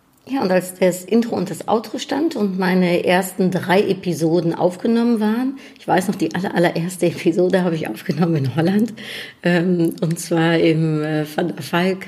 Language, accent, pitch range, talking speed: German, German, 165-195 Hz, 180 wpm